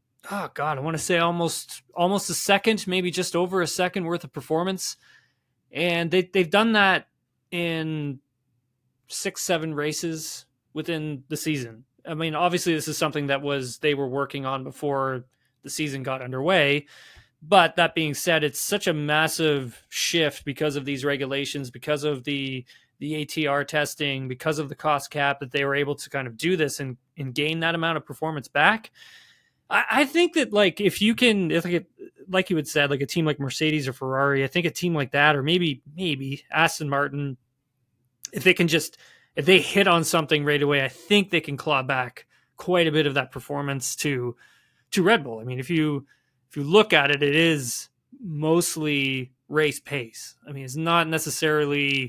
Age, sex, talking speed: 20-39, male, 190 wpm